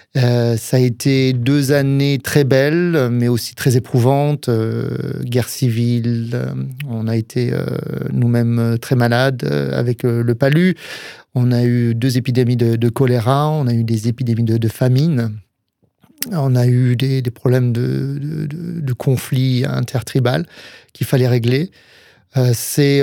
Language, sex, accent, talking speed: French, male, French, 155 wpm